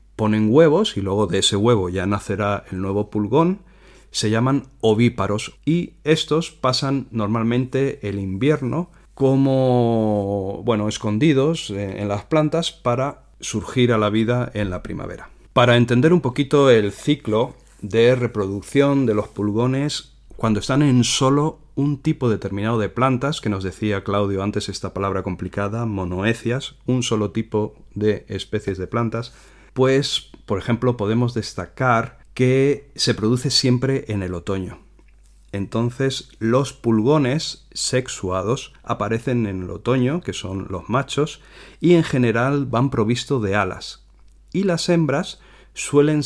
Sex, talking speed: male, 140 wpm